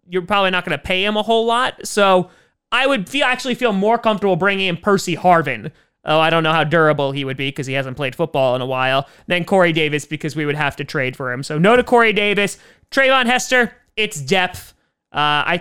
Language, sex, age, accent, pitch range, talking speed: English, male, 30-49, American, 145-190 Hz, 240 wpm